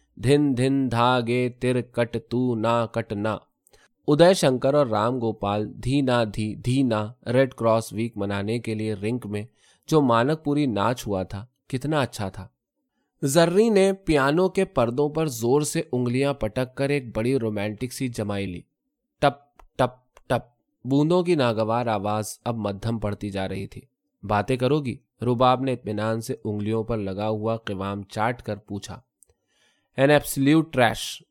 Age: 20-39